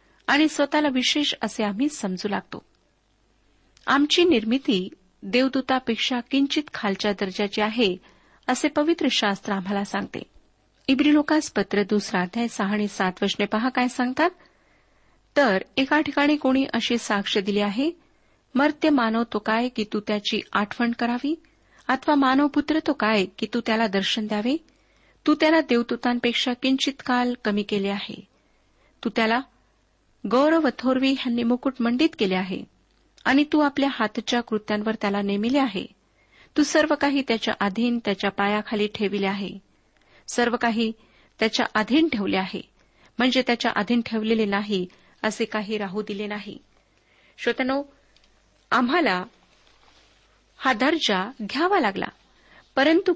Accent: native